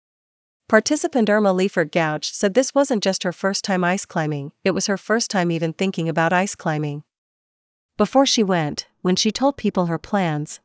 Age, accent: 40-59, American